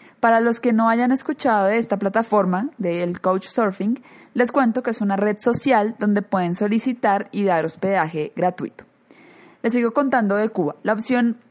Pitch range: 195-245 Hz